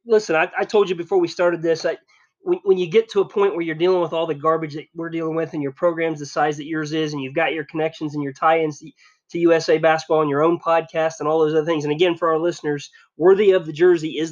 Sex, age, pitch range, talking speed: male, 20-39, 155-185 Hz, 285 wpm